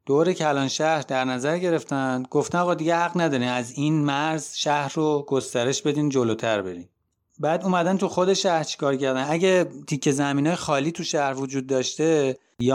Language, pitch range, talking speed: Persian, 130-160 Hz, 175 wpm